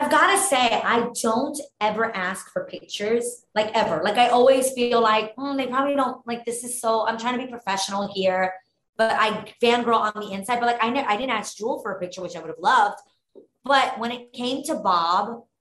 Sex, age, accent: female, 20-39, American